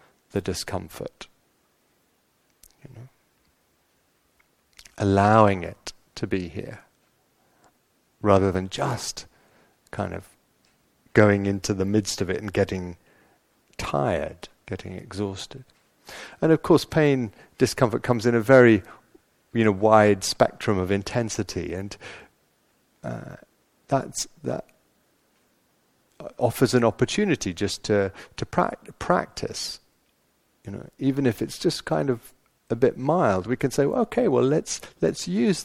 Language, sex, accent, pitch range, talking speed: English, male, British, 100-130 Hz, 120 wpm